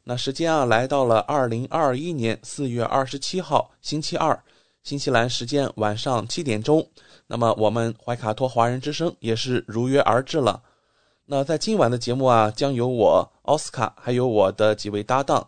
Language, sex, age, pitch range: English, male, 20-39, 110-140 Hz